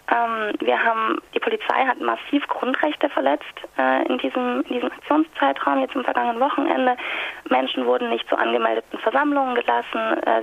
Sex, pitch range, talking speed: female, 215-290 Hz, 155 wpm